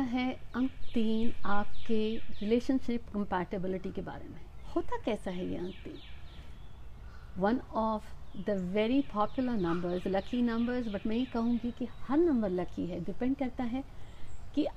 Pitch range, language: 195-270 Hz, Hindi